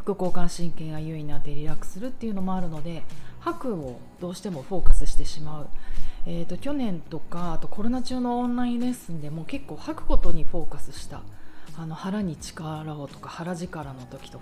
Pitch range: 150-210 Hz